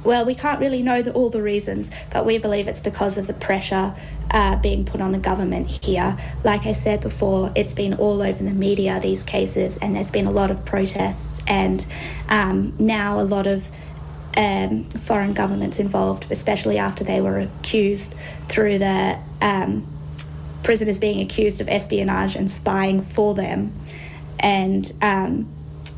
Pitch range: 150-210 Hz